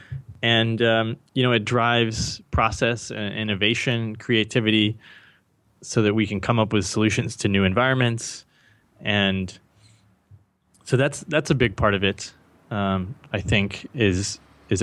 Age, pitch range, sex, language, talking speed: 20-39, 95-120 Hz, male, English, 145 wpm